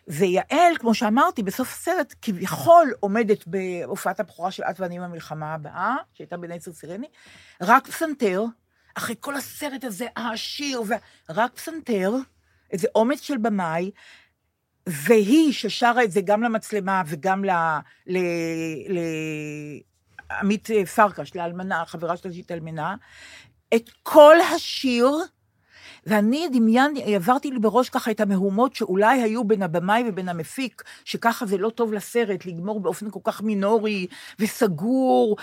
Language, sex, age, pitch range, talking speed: Hebrew, female, 50-69, 190-250 Hz, 125 wpm